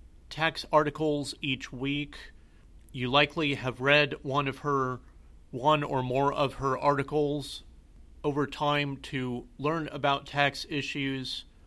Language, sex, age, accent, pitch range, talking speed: English, male, 40-59, American, 130-155 Hz, 125 wpm